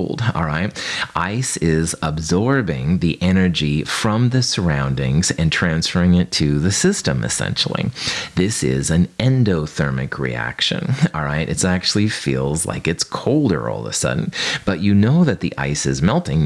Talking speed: 150 wpm